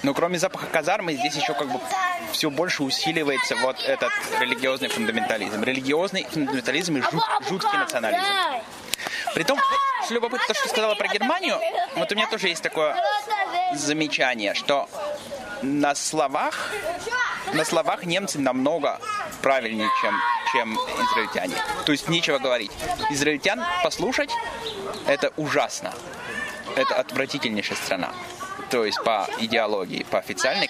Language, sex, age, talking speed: German, male, 20-39, 125 wpm